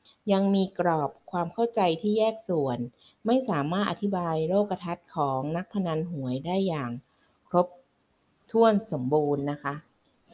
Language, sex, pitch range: Thai, female, 150-190 Hz